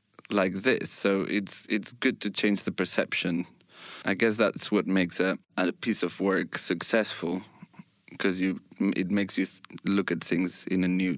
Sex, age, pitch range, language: male, 30-49, 85-100 Hz, English